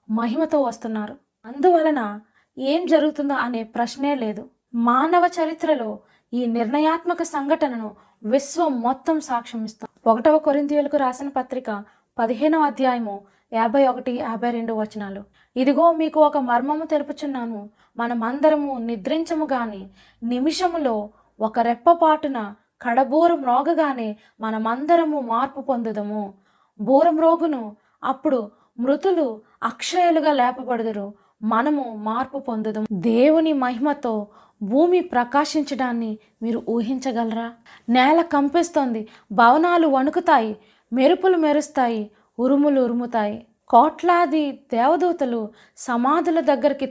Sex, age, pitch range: female, 20-39, 230-300 Hz